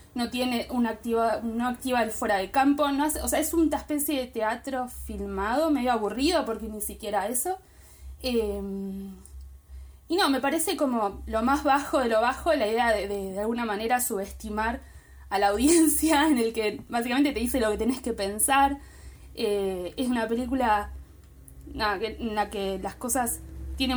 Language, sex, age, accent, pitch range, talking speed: Spanish, female, 20-39, Argentinian, 200-260 Hz, 185 wpm